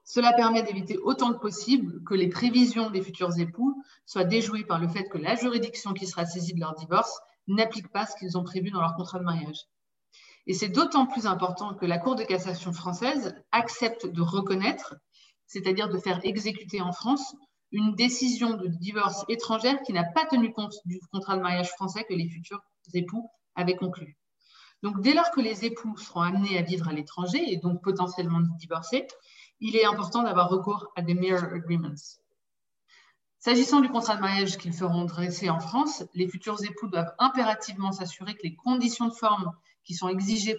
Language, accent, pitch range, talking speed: English, French, 175-225 Hz, 190 wpm